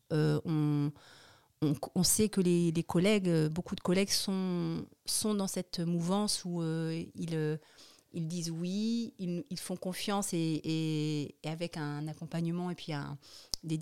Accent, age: French, 40-59